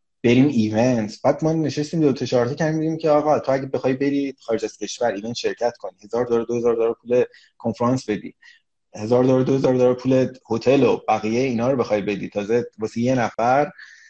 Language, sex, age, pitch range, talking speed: Persian, male, 30-49, 120-160 Hz, 185 wpm